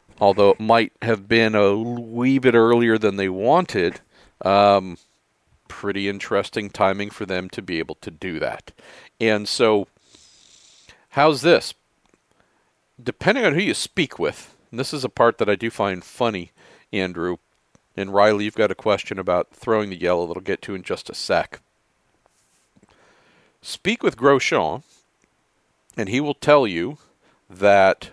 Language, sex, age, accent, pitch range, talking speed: English, male, 50-69, American, 100-130 Hz, 155 wpm